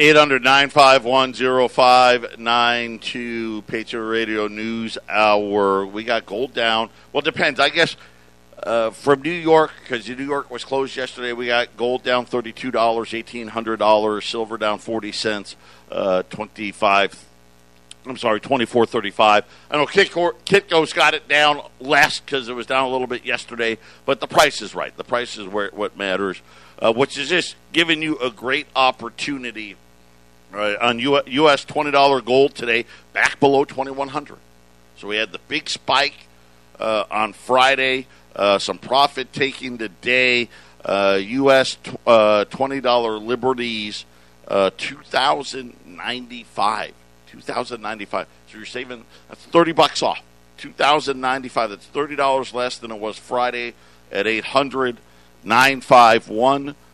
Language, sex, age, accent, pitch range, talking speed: English, male, 50-69, American, 105-130 Hz, 155 wpm